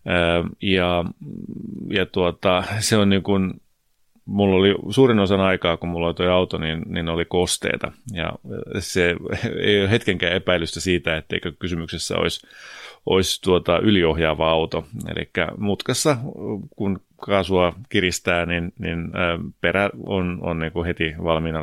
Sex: male